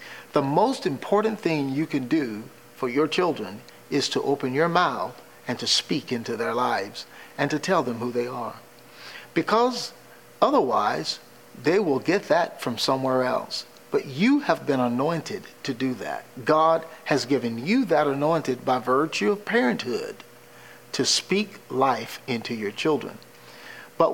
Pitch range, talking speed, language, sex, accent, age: 130-185 Hz, 155 wpm, English, male, American, 50-69